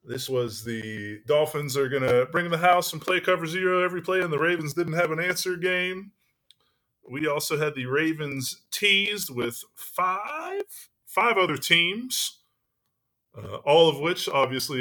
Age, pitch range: 30-49, 120-180 Hz